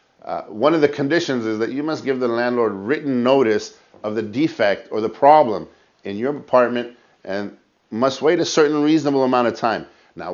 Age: 50-69